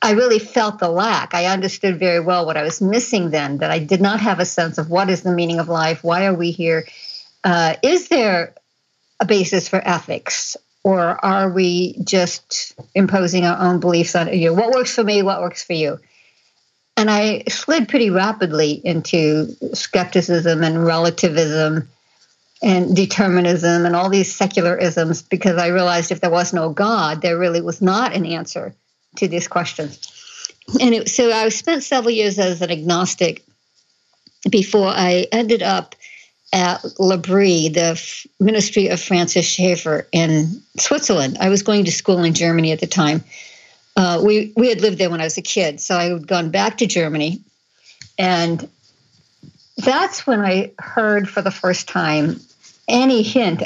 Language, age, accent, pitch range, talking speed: English, 60-79, American, 170-205 Hz, 170 wpm